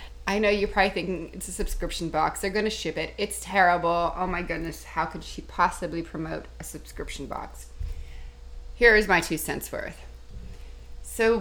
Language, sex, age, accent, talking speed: English, female, 30-49, American, 180 wpm